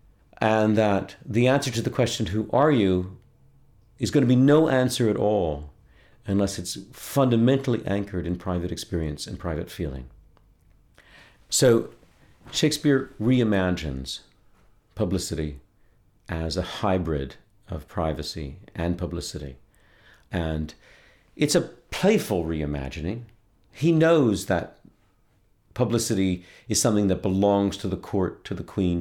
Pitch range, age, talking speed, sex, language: 85-115 Hz, 50-69, 120 wpm, male, English